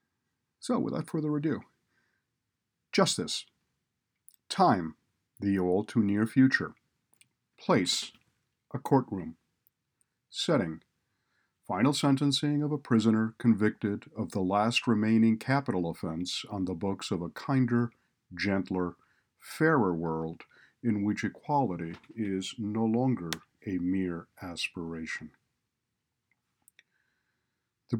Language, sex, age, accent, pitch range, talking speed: English, male, 50-69, American, 95-120 Hz, 95 wpm